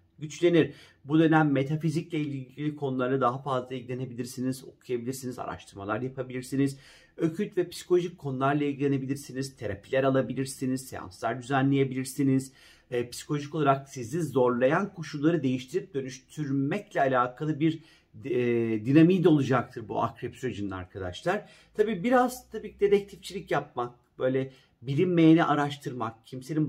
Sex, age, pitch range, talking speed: male, 40-59, 125-165 Hz, 110 wpm